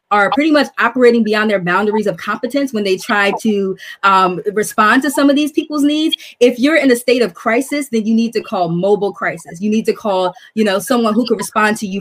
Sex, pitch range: female, 195-245 Hz